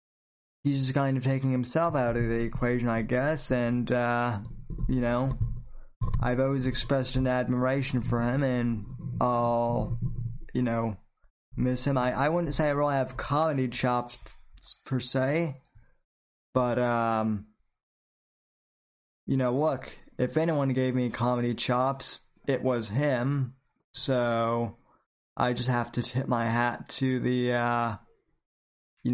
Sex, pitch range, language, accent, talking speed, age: male, 120-135 Hz, English, American, 135 wpm, 20-39